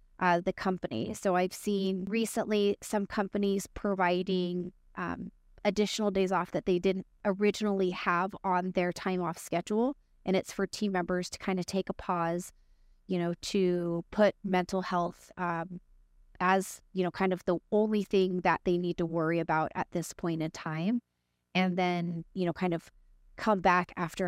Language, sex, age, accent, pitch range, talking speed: English, female, 30-49, American, 160-190 Hz, 175 wpm